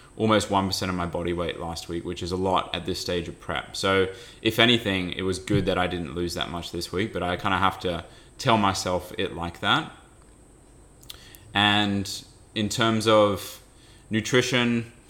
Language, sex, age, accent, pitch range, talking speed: English, male, 20-39, Australian, 95-105 Hz, 190 wpm